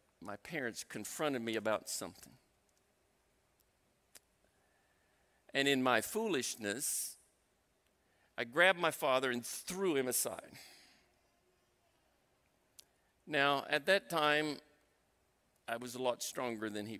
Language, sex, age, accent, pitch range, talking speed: English, male, 50-69, American, 100-135 Hz, 100 wpm